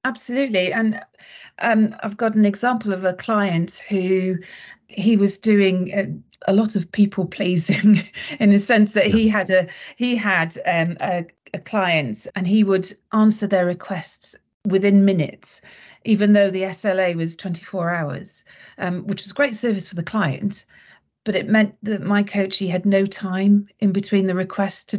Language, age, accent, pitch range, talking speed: English, 40-59, British, 180-210 Hz, 170 wpm